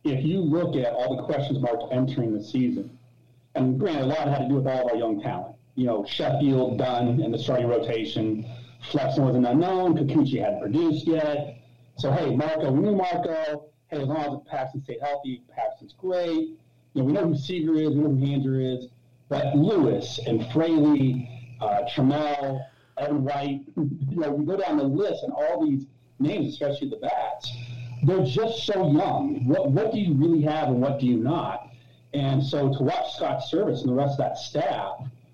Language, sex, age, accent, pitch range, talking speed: English, male, 40-59, American, 125-155 Hz, 200 wpm